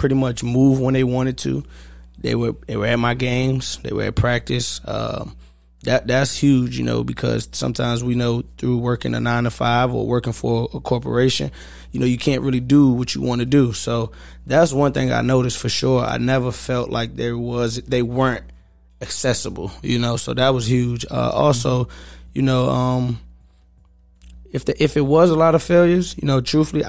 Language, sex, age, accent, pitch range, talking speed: English, male, 20-39, American, 115-135 Hz, 200 wpm